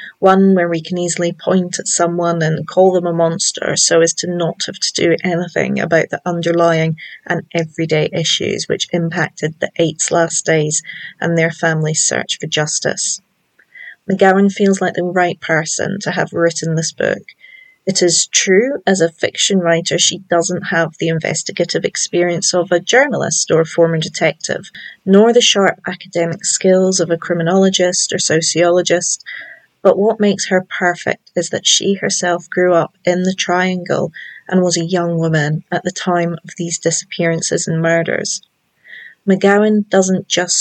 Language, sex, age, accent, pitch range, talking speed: English, female, 30-49, British, 165-190 Hz, 160 wpm